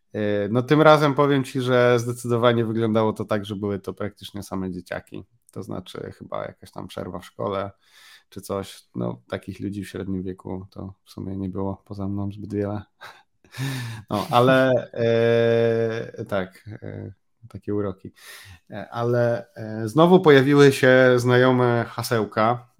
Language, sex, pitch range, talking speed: Polish, male, 100-120 Hz, 140 wpm